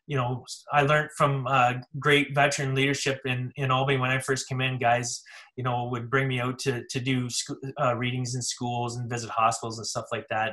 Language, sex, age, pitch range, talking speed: English, male, 20-39, 120-130 Hz, 215 wpm